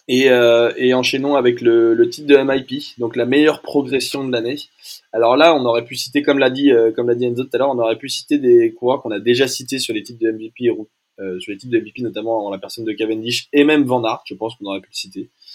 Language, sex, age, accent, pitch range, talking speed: French, male, 20-39, French, 115-150 Hz, 270 wpm